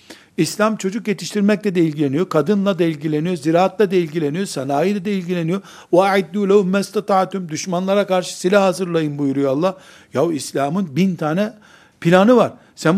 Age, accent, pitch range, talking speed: 60-79, native, 160-210 Hz, 125 wpm